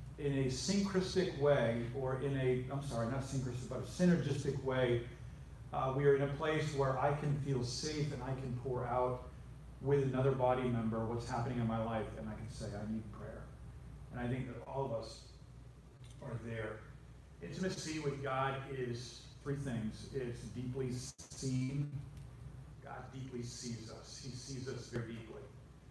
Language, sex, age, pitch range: English, male, 40-59, 120-140 Hz